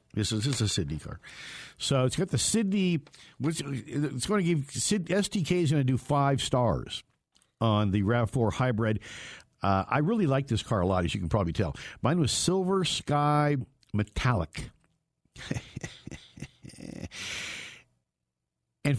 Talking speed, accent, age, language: 150 wpm, American, 60-79, English